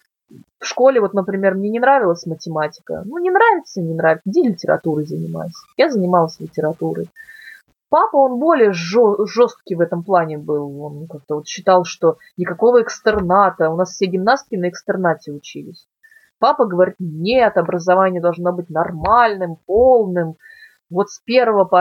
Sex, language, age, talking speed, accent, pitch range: female, Russian, 20-39, 145 wpm, native, 175-225 Hz